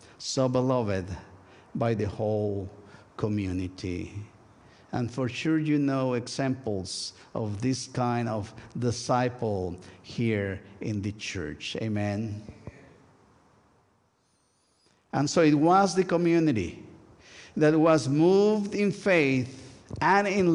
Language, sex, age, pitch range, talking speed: English, male, 50-69, 110-160 Hz, 100 wpm